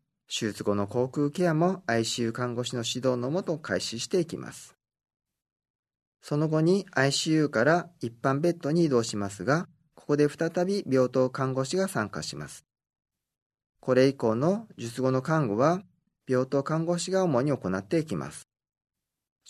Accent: native